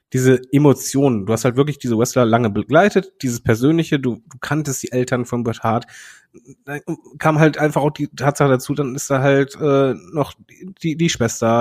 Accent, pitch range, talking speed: German, 120-150 Hz, 195 wpm